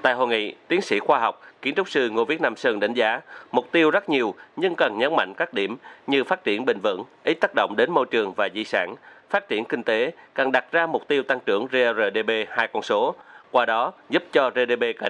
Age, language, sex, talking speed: 30-49, Vietnamese, male, 245 wpm